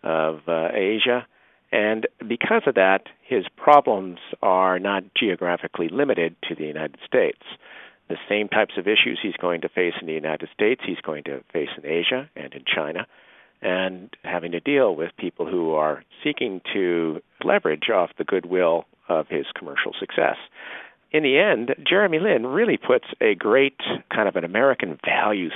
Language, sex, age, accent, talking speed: English, male, 50-69, American, 165 wpm